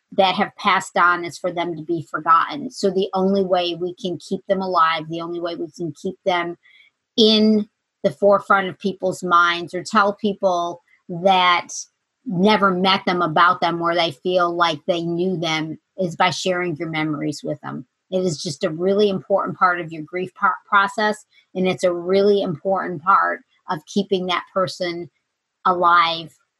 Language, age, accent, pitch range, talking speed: English, 40-59, American, 160-190 Hz, 175 wpm